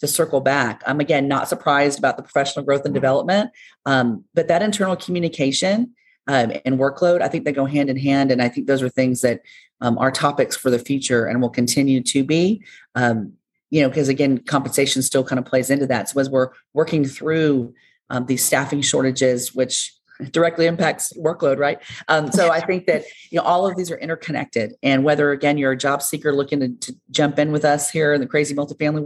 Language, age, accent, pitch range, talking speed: English, 40-59, American, 135-160 Hz, 210 wpm